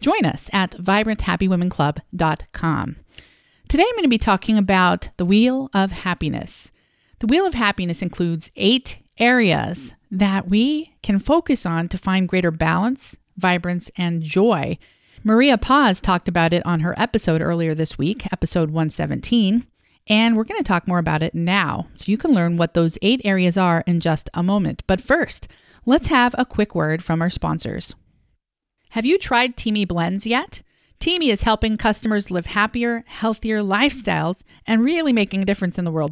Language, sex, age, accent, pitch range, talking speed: English, female, 40-59, American, 175-230 Hz, 170 wpm